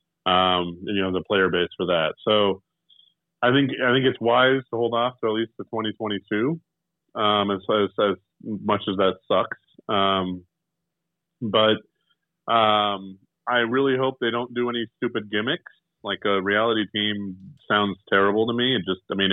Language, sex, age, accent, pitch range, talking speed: English, male, 30-49, American, 100-120 Hz, 170 wpm